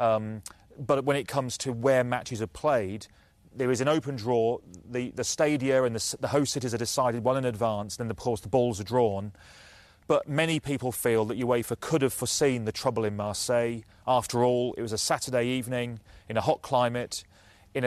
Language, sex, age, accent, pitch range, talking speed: English, male, 30-49, British, 110-125 Hz, 205 wpm